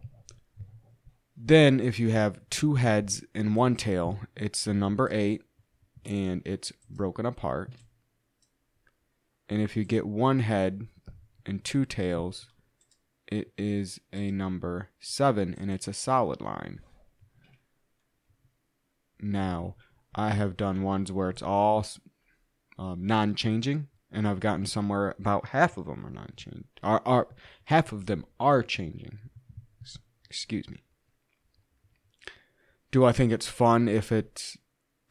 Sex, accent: male, American